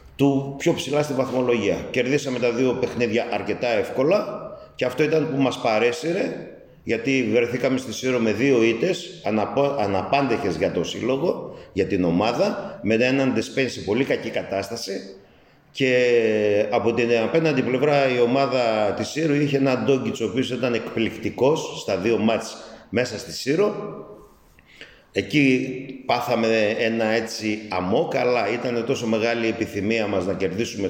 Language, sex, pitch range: Greek, male, 110-135 Hz